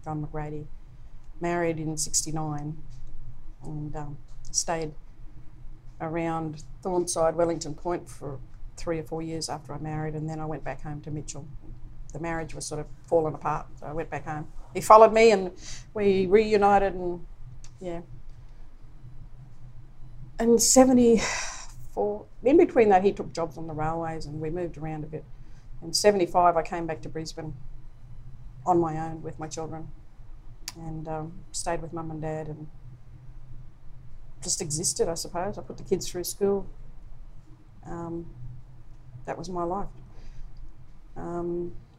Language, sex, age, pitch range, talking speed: English, female, 40-59, 125-170 Hz, 145 wpm